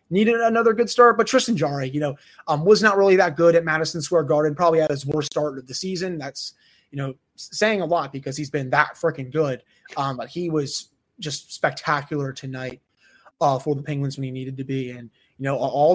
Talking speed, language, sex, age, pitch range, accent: 220 wpm, English, male, 20-39, 135-165 Hz, American